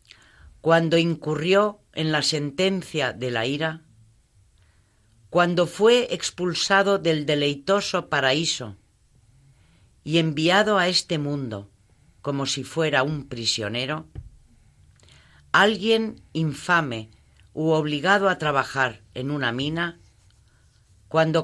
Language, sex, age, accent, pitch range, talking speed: Spanish, female, 40-59, Spanish, 110-170 Hz, 95 wpm